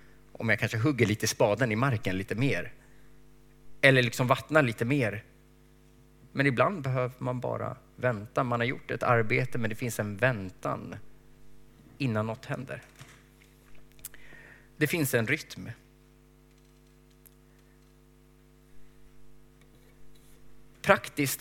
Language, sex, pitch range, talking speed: Swedish, male, 105-150 Hz, 110 wpm